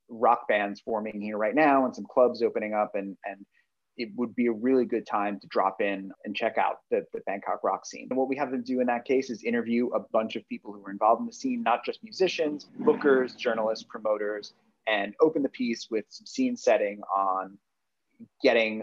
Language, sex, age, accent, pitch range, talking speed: English, male, 30-49, American, 100-130 Hz, 215 wpm